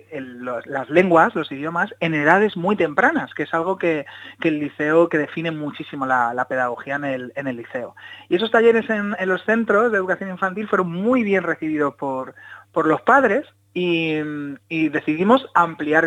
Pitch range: 140-180 Hz